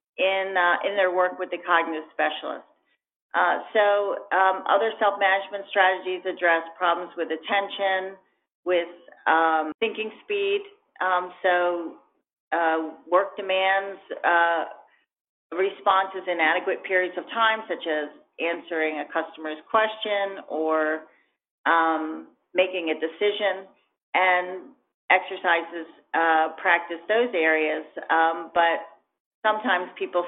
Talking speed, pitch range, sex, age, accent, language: 110 wpm, 165-200 Hz, female, 40-59, American, English